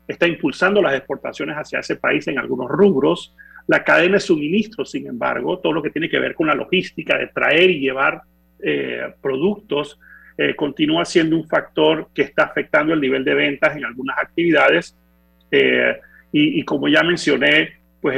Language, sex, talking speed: Spanish, male, 175 wpm